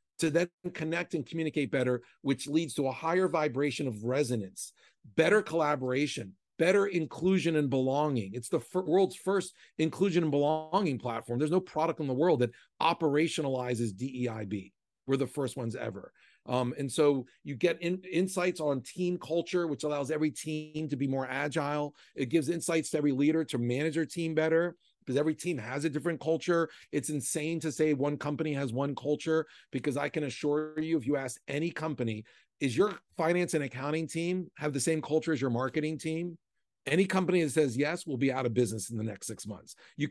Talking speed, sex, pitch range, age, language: 190 wpm, male, 130-165 Hz, 40-59, English